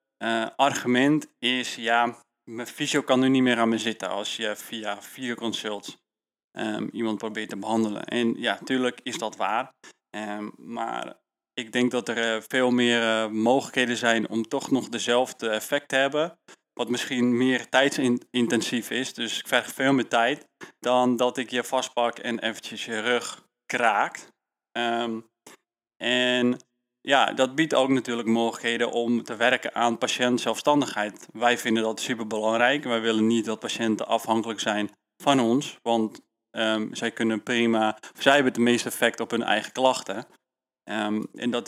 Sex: male